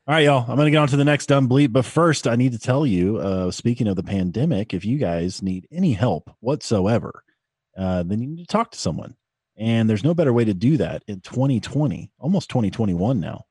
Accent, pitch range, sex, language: American, 100-130 Hz, male, English